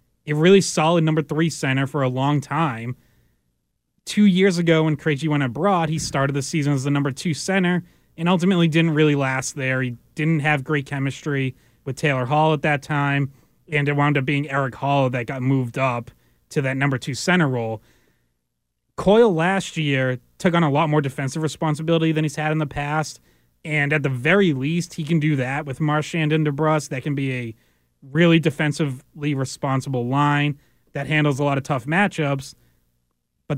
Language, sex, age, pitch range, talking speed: English, male, 30-49, 130-155 Hz, 190 wpm